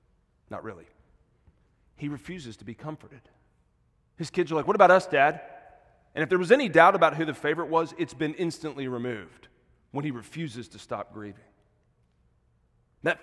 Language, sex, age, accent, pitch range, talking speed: English, male, 40-59, American, 105-145 Hz, 170 wpm